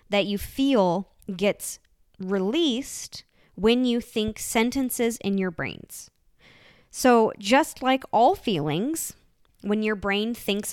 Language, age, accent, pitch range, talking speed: English, 20-39, American, 195-265 Hz, 115 wpm